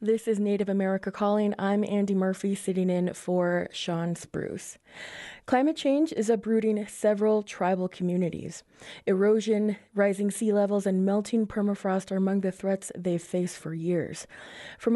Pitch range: 195-245 Hz